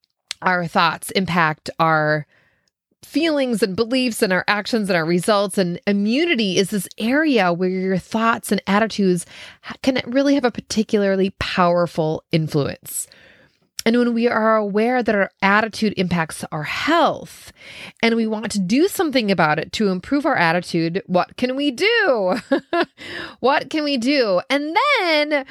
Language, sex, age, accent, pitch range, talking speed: English, female, 20-39, American, 180-240 Hz, 150 wpm